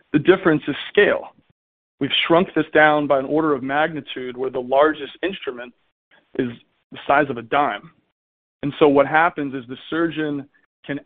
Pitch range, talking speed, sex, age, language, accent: 135-155 Hz, 170 wpm, male, 40-59, English, American